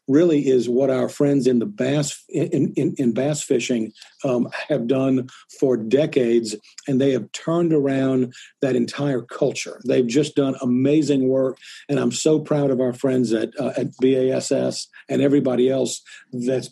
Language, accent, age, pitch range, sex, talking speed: English, American, 50-69, 125-145 Hz, male, 165 wpm